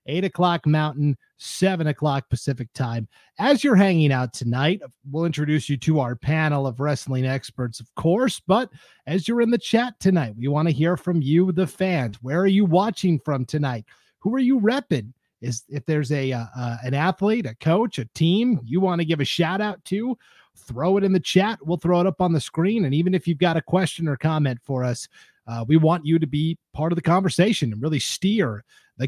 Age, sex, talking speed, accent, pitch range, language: 30-49, male, 215 wpm, American, 140-185 Hz, English